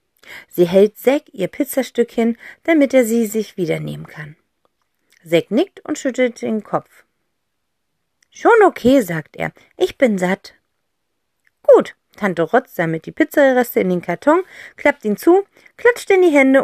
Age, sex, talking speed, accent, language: 40-59, female, 150 wpm, German, German